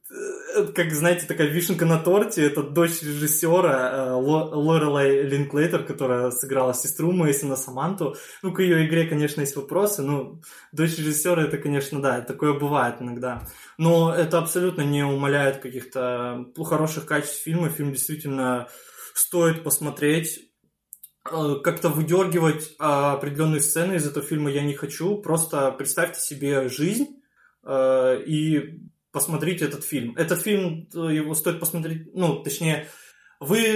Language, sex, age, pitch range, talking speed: Russian, male, 20-39, 140-165 Hz, 130 wpm